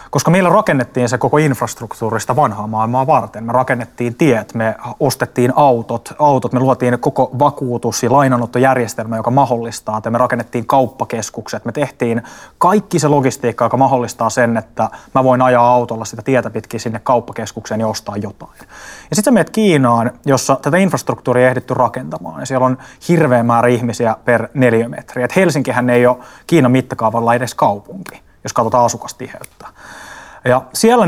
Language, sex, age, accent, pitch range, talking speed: Finnish, male, 20-39, native, 115-140 Hz, 150 wpm